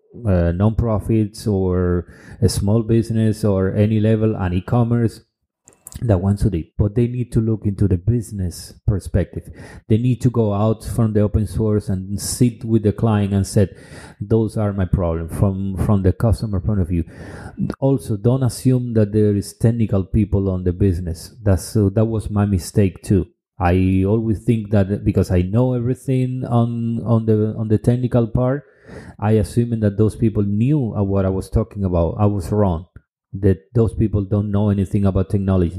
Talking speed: 180 wpm